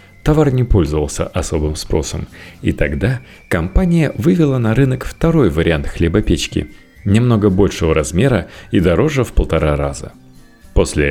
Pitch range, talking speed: 80-115 Hz, 125 wpm